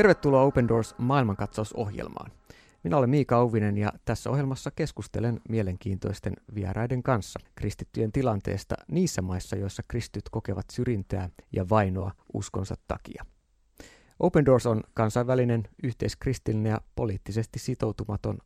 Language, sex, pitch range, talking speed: Finnish, male, 100-130 Hz, 115 wpm